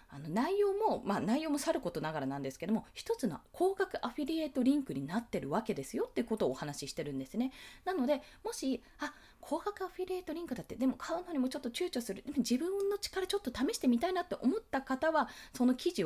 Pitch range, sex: 200-335 Hz, female